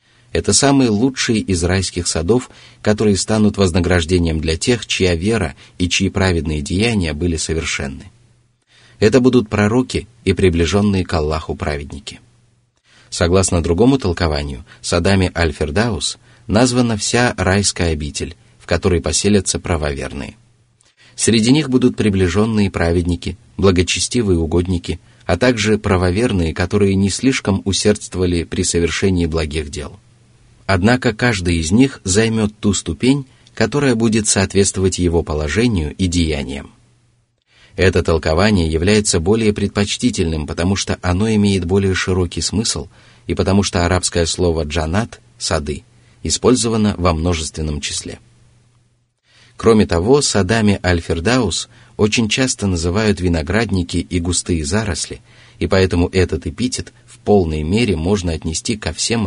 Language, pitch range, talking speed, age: Russian, 85-115 Hz, 120 wpm, 30-49